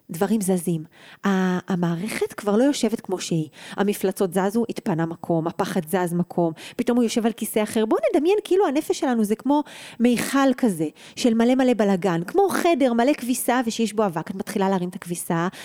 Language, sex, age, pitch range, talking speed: Hebrew, female, 30-49, 195-260 Hz, 175 wpm